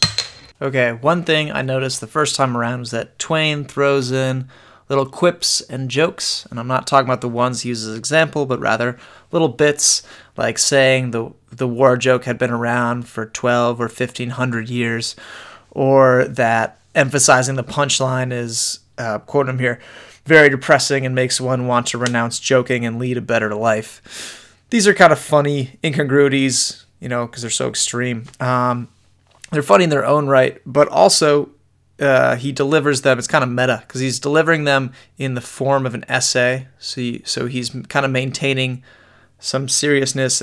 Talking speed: 175 wpm